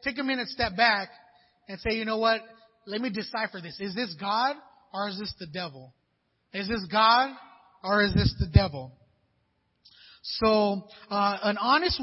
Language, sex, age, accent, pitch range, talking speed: English, male, 30-49, American, 185-230 Hz, 170 wpm